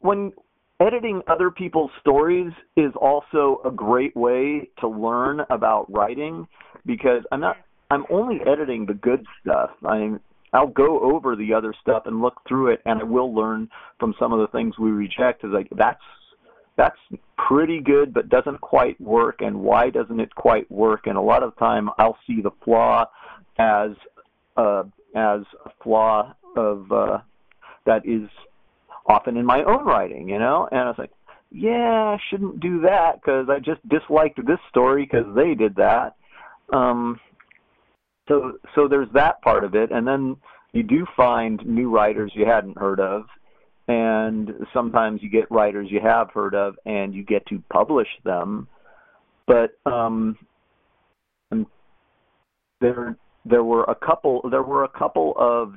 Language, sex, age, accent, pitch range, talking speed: English, male, 40-59, American, 110-145 Hz, 160 wpm